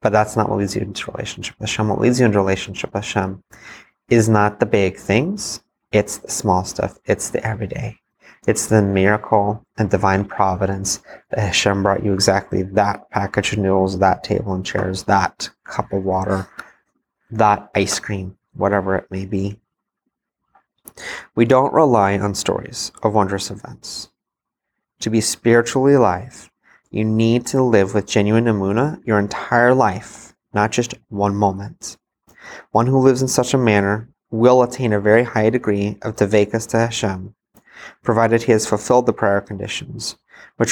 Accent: American